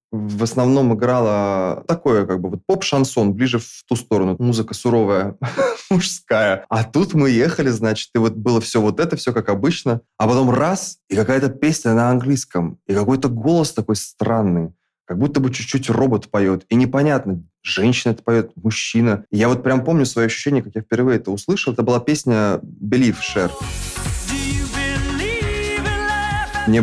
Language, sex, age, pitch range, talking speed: Russian, male, 20-39, 105-130 Hz, 155 wpm